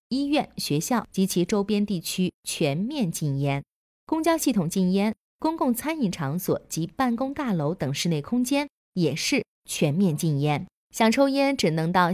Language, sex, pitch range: Chinese, female, 160-230 Hz